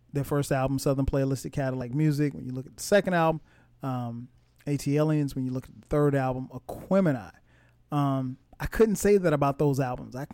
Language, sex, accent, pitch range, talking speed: English, male, American, 130-165 Hz, 190 wpm